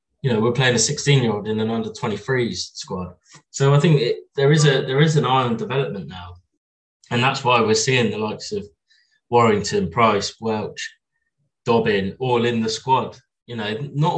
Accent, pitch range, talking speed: British, 110-150 Hz, 180 wpm